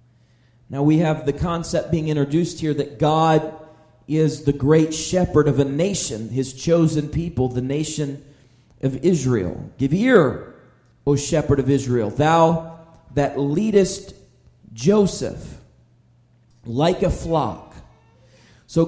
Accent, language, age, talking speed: American, English, 40-59, 120 wpm